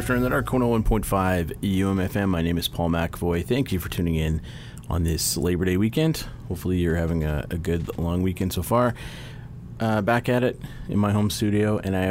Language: English